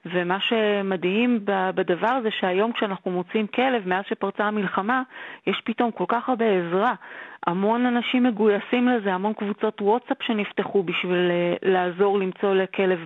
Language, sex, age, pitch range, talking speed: Hebrew, female, 30-49, 185-225 Hz, 135 wpm